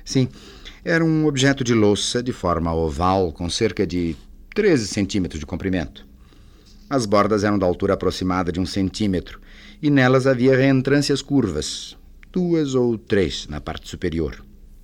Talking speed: 145 wpm